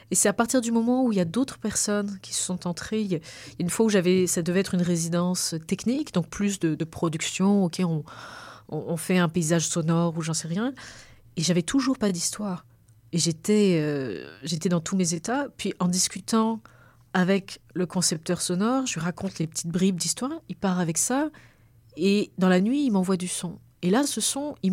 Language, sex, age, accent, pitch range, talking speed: French, female, 30-49, French, 165-215 Hz, 210 wpm